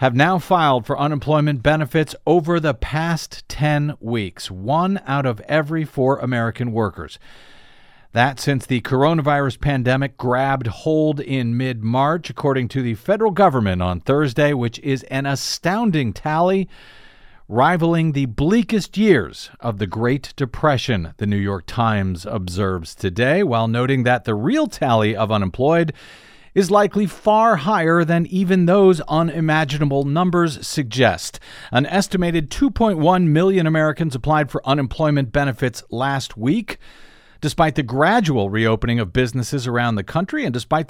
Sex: male